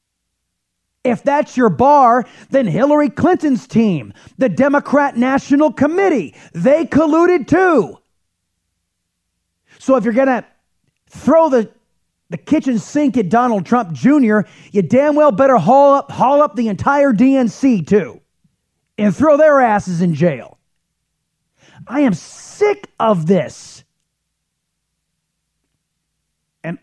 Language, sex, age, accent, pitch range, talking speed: English, male, 30-49, American, 140-235 Hz, 120 wpm